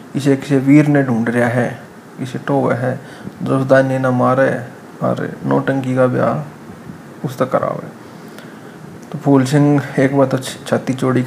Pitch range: 130-140 Hz